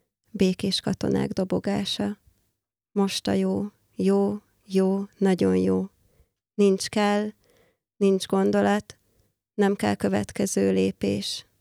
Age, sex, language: 20-39, female, Hungarian